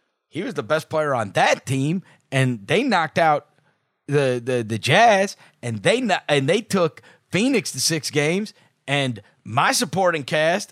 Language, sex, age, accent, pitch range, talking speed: English, male, 30-49, American, 120-170 Hz, 160 wpm